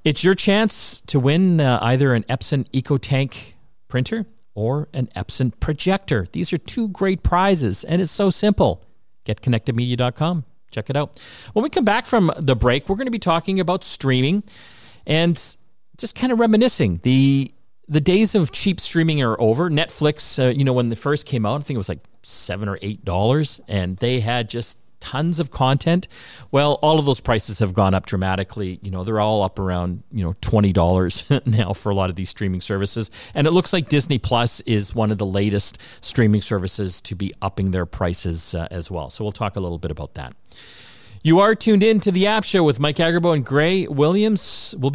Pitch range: 105-165 Hz